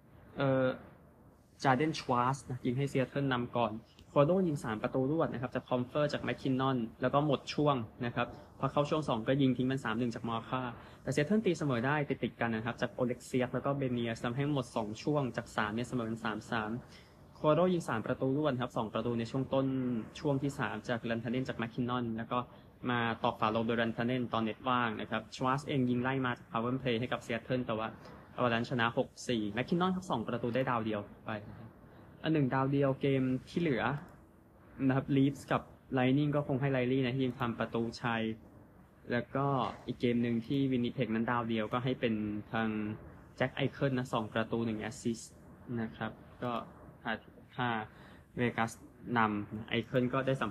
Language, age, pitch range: Thai, 20-39, 115-135 Hz